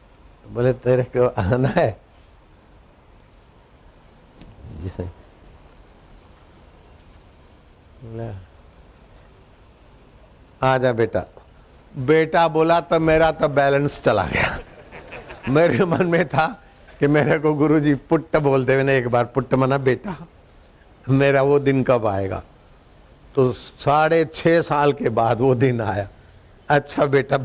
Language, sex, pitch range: Hindi, male, 105-155 Hz